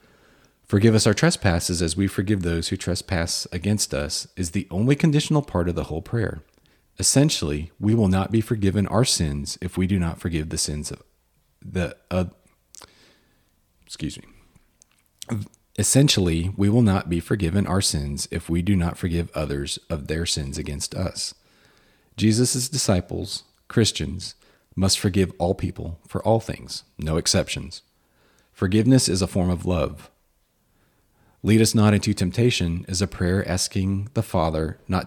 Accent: American